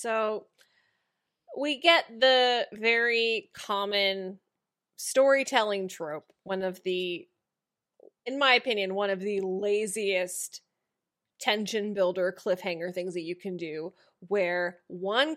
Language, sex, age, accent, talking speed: English, female, 20-39, American, 110 wpm